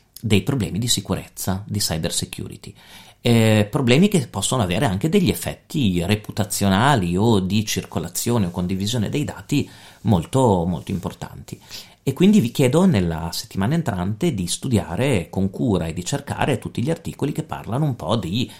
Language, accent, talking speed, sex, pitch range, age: Italian, native, 155 wpm, male, 90-120 Hz, 40-59